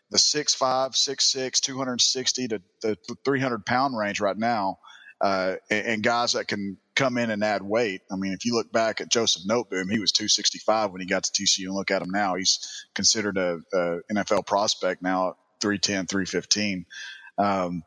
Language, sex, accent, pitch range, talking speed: English, male, American, 105-125 Hz, 185 wpm